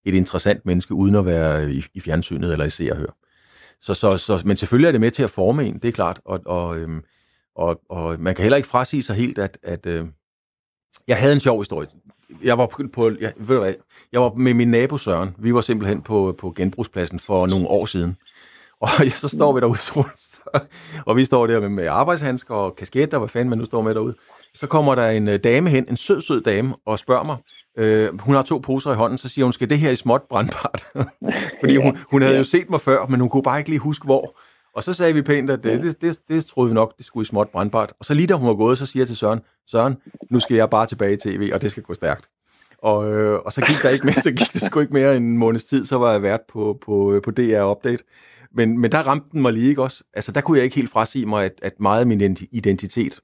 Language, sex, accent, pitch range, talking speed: Danish, male, native, 100-130 Hz, 250 wpm